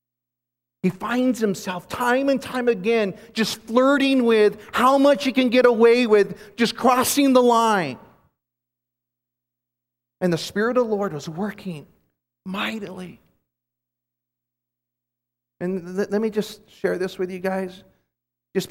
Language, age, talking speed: English, 40-59, 130 wpm